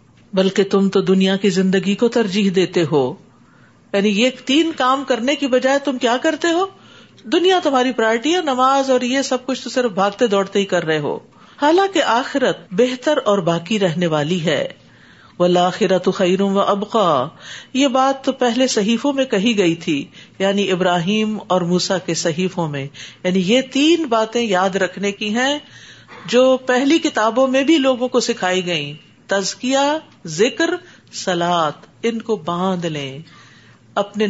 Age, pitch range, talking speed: 50-69, 185-260 Hz, 160 wpm